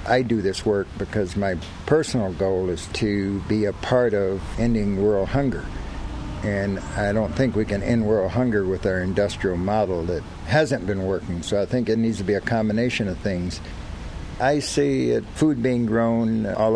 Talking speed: 185 wpm